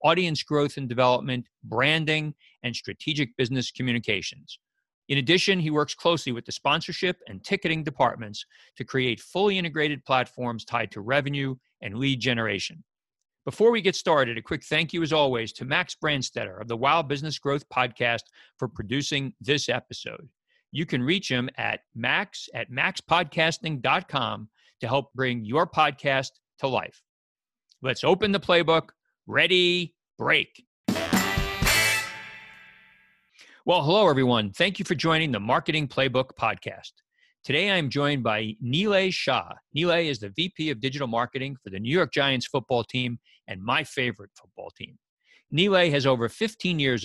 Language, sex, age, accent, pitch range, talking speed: English, male, 50-69, American, 120-160 Hz, 150 wpm